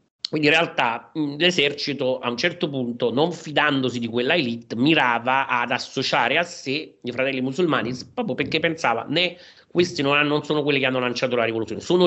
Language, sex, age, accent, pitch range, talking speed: Italian, male, 40-59, native, 120-155 Hz, 175 wpm